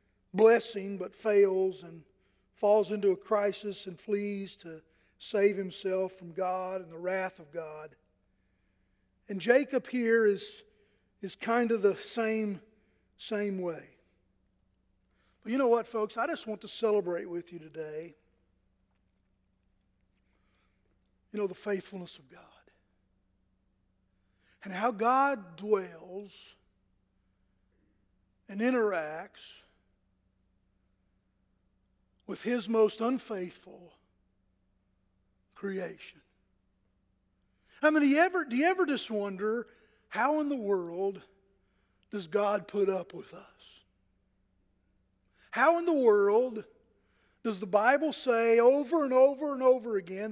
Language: English